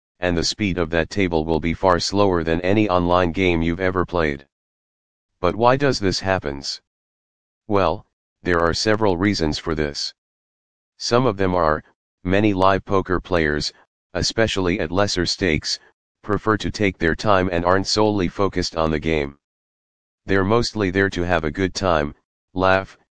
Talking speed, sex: 160 wpm, male